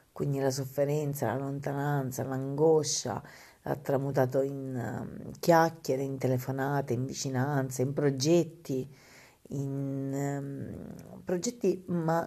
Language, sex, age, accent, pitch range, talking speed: Italian, female, 40-59, native, 135-160 Hz, 105 wpm